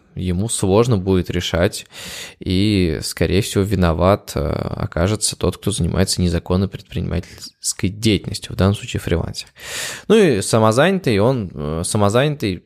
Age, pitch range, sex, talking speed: 20-39, 90-120 Hz, male, 115 wpm